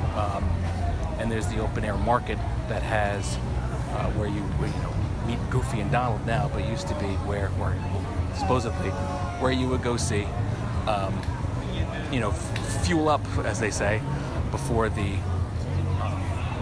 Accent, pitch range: American, 100-120 Hz